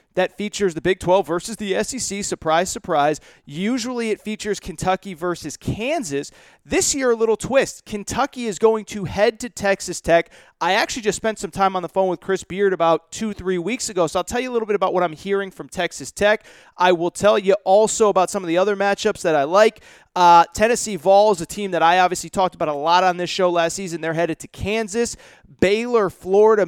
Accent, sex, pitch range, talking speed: American, male, 175-215 Hz, 220 wpm